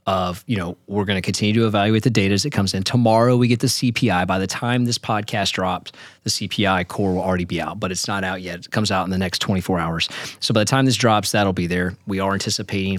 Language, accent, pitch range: English, American, 95-115 Hz